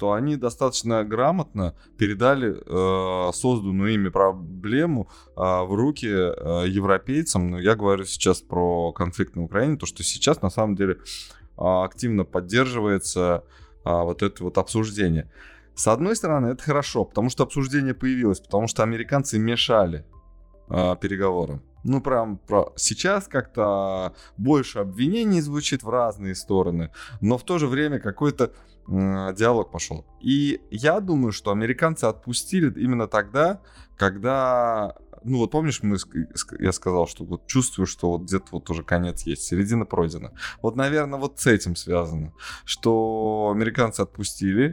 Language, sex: Russian, male